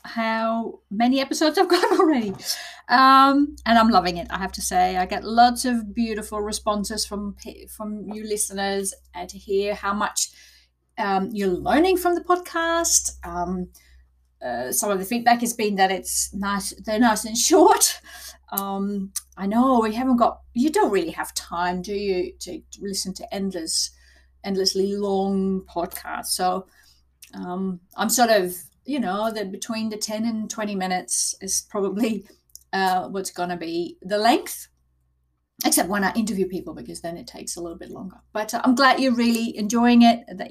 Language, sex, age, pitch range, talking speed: English, female, 30-49, 180-230 Hz, 170 wpm